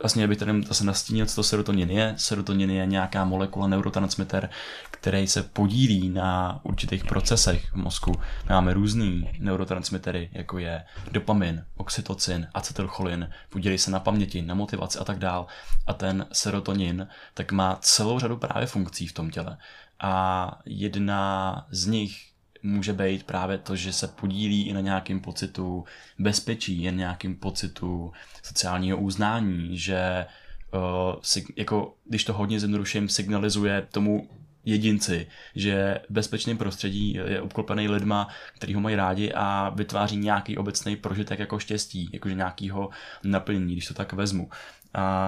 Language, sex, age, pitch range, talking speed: Czech, male, 20-39, 95-105 Hz, 140 wpm